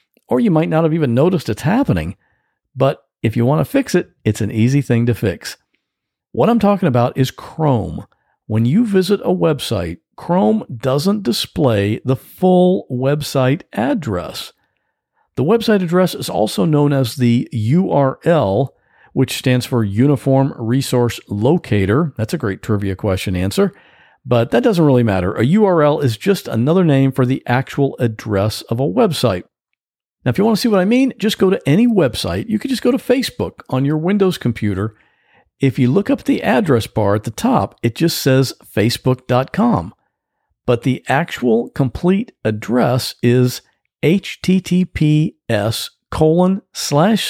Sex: male